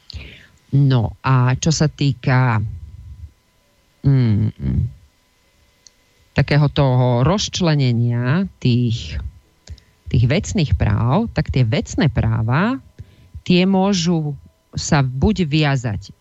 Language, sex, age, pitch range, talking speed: Slovak, female, 40-59, 110-155 Hz, 80 wpm